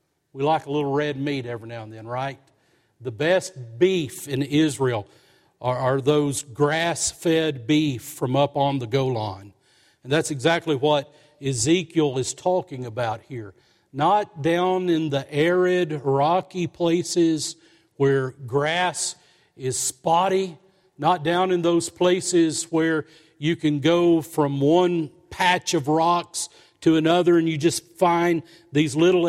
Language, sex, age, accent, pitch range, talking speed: English, male, 50-69, American, 140-180 Hz, 140 wpm